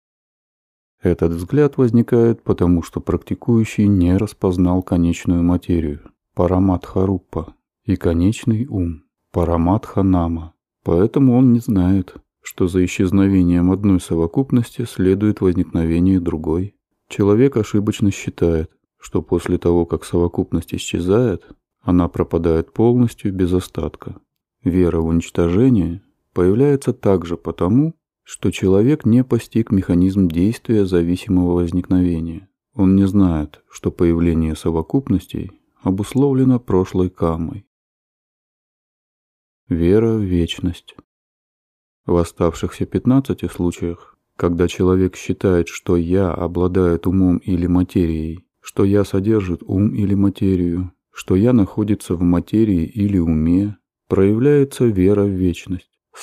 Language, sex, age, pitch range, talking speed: Russian, male, 30-49, 85-105 Hz, 105 wpm